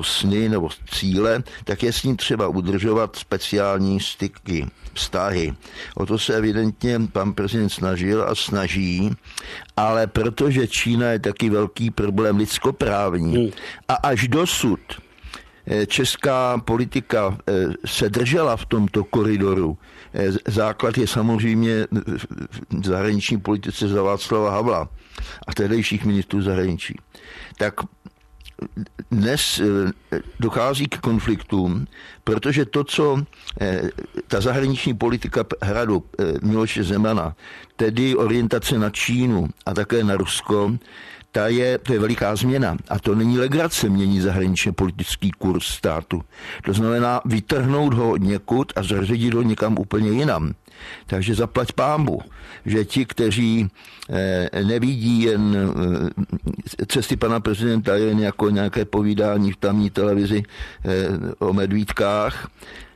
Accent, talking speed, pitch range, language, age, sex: native, 115 wpm, 100-120 Hz, Czech, 60-79, male